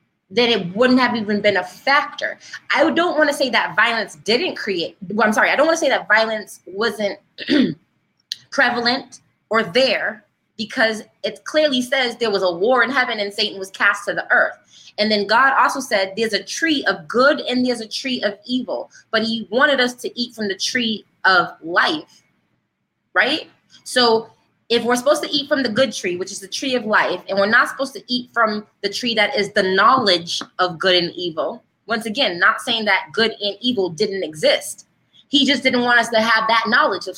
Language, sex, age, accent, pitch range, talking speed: English, female, 20-39, American, 205-250 Hz, 205 wpm